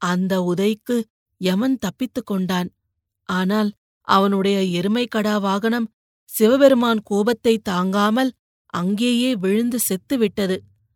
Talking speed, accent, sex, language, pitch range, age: 80 wpm, native, female, Tamil, 185-225 Hz, 30-49